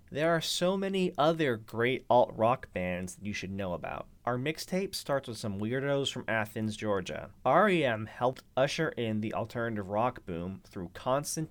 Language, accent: English, American